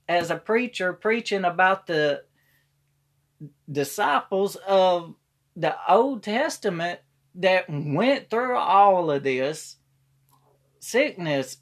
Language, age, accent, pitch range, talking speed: English, 40-59, American, 130-195 Hz, 95 wpm